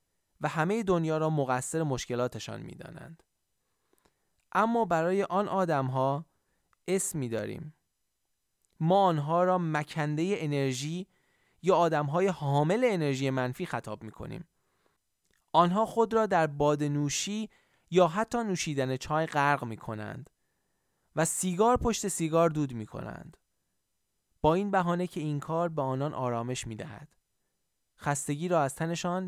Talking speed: 130 wpm